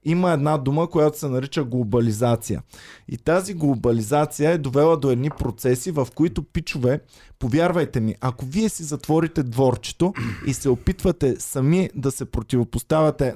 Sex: male